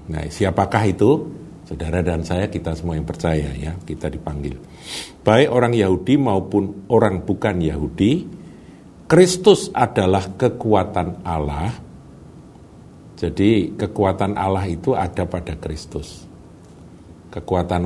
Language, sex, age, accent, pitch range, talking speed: Indonesian, male, 50-69, native, 80-100 Hz, 110 wpm